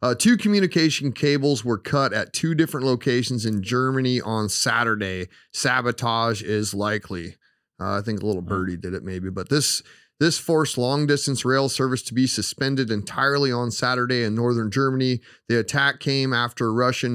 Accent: American